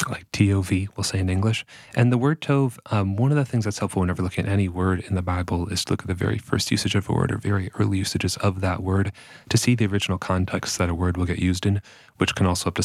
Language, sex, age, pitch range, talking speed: English, male, 30-49, 95-120 Hz, 280 wpm